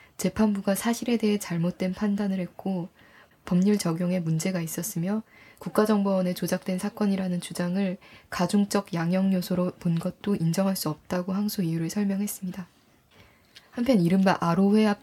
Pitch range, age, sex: 175-205 Hz, 20-39, female